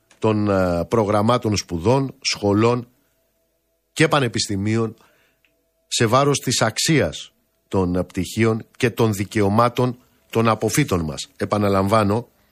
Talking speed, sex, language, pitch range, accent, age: 90 wpm, male, Greek, 100-130 Hz, native, 50-69